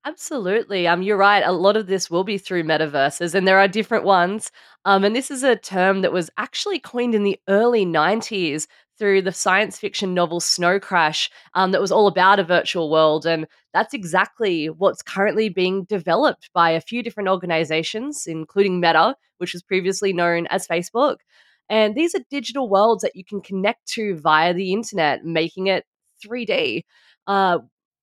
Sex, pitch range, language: female, 175-220 Hz, English